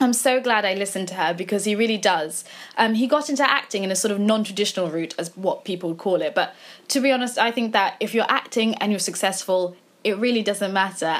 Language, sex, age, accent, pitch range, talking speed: English, female, 20-39, British, 195-245 Hz, 240 wpm